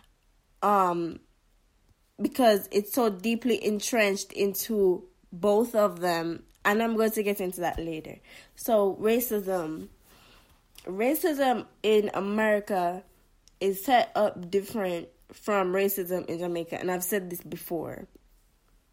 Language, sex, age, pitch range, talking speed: English, female, 10-29, 185-215 Hz, 115 wpm